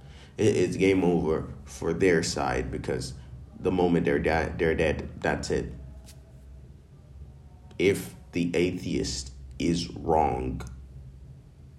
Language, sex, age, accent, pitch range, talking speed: English, male, 30-49, American, 65-85 Hz, 100 wpm